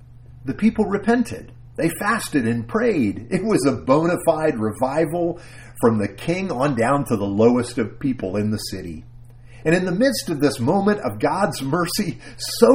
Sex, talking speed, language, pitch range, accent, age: male, 175 wpm, English, 120-200 Hz, American, 50-69